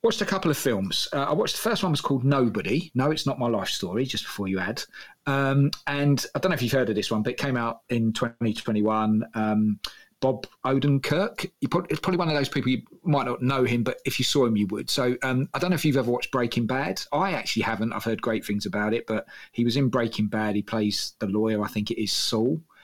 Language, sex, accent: English, male, British